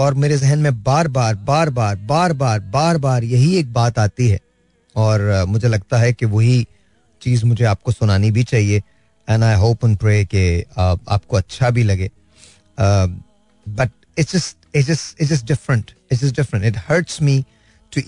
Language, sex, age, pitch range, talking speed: Hindi, male, 30-49, 100-140 Hz, 165 wpm